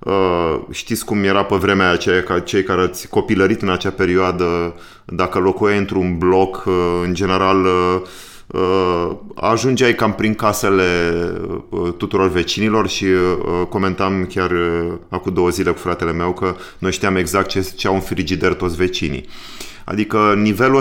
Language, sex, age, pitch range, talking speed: Romanian, male, 30-49, 90-105 Hz, 135 wpm